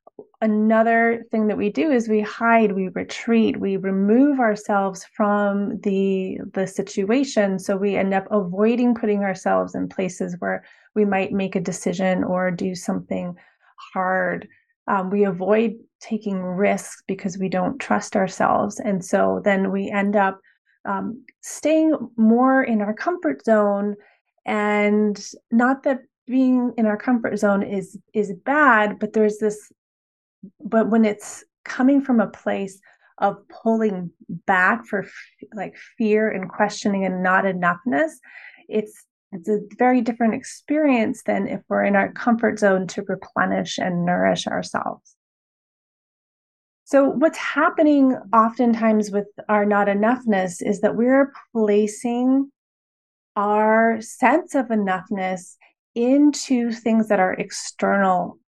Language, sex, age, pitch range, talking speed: English, female, 30-49, 195-240 Hz, 135 wpm